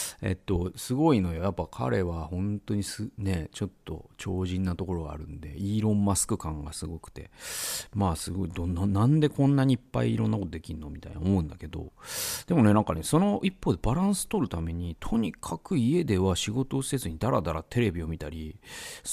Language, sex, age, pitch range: Japanese, male, 40-59, 90-140 Hz